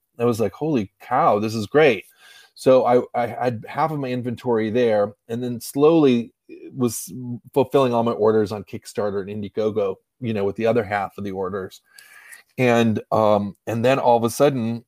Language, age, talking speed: English, 30-49, 185 wpm